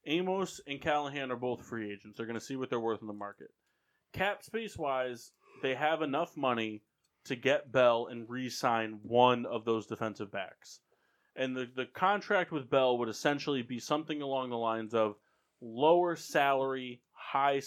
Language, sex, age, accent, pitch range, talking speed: English, male, 30-49, American, 120-145 Hz, 175 wpm